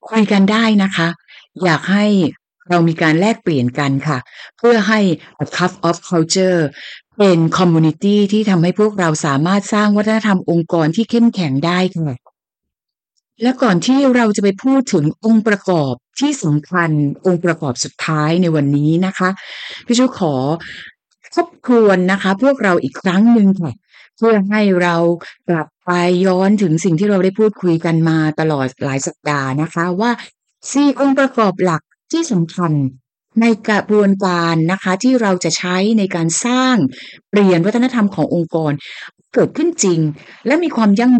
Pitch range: 165-225 Hz